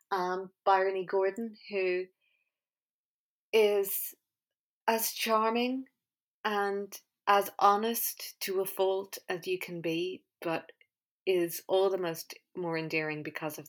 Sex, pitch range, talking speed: female, 165-195 Hz, 120 wpm